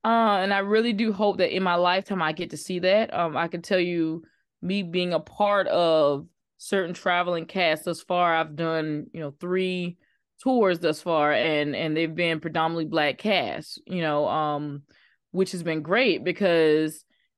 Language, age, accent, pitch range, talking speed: English, 20-39, American, 160-195 Hz, 185 wpm